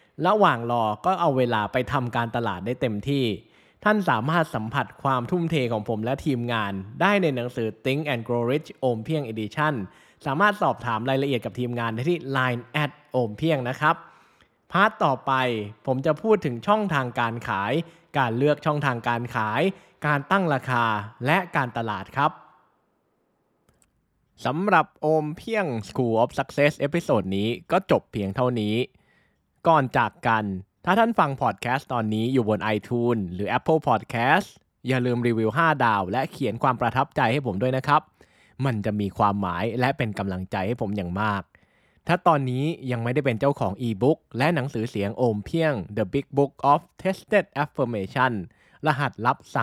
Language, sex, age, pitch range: Thai, male, 20-39, 110-150 Hz